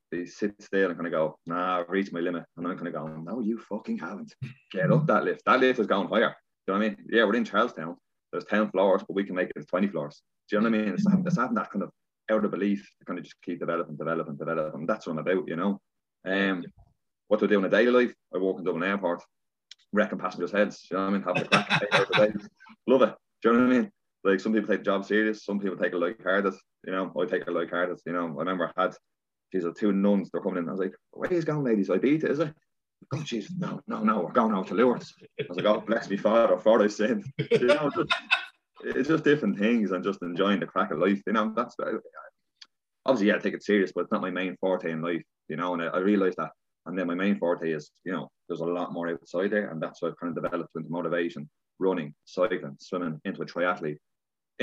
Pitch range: 90-110 Hz